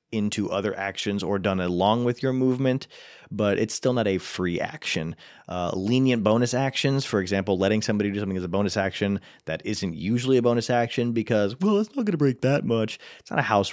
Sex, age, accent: male, 30-49, American